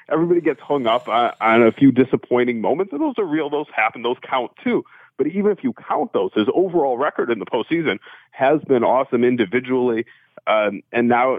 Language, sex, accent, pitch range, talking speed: English, male, American, 125-165 Hz, 195 wpm